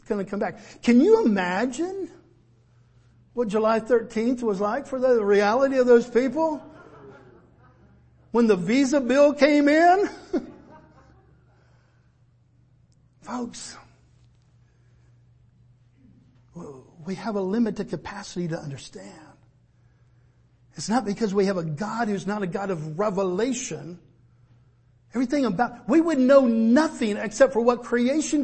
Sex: male